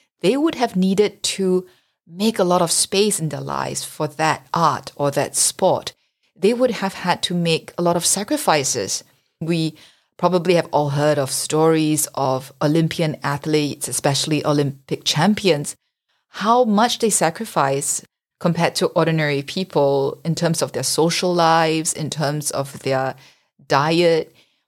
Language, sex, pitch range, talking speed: English, female, 145-185 Hz, 150 wpm